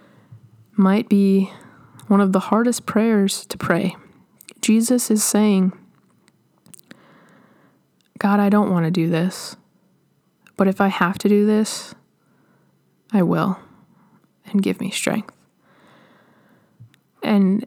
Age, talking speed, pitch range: 20-39, 110 wpm, 190-220 Hz